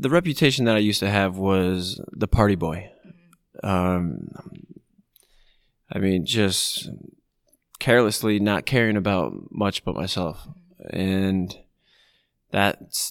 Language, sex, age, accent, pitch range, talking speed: English, male, 20-39, American, 90-105 Hz, 110 wpm